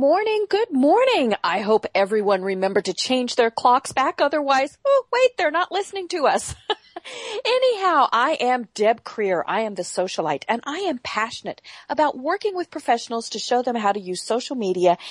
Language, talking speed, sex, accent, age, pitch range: English, 180 wpm, female, American, 40-59, 195-285 Hz